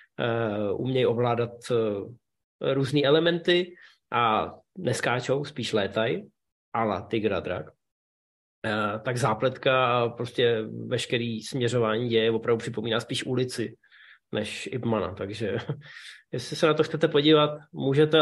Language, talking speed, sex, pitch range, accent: Czech, 100 wpm, male, 115-145 Hz, native